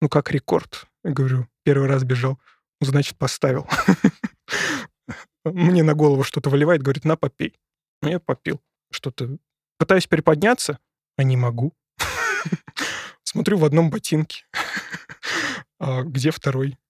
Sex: male